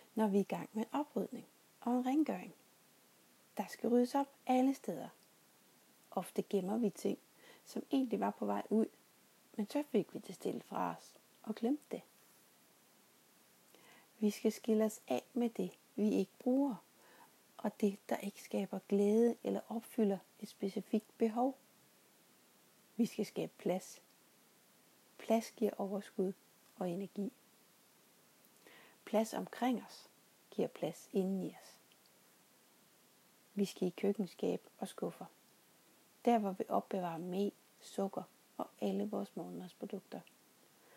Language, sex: English, female